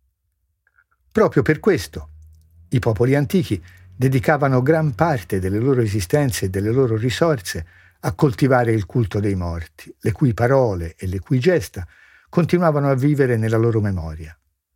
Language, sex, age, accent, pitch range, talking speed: Italian, male, 60-79, native, 100-145 Hz, 140 wpm